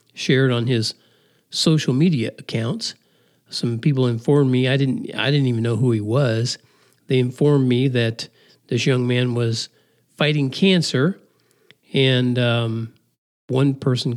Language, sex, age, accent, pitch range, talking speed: English, male, 50-69, American, 125-170 Hz, 140 wpm